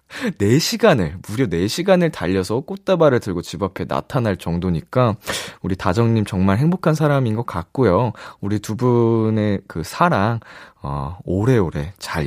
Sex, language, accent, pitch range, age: male, Korean, native, 95-145 Hz, 20-39